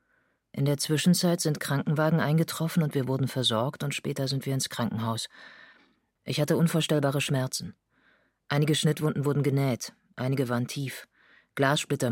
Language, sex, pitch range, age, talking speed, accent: German, female, 125-155 Hz, 40-59, 140 wpm, German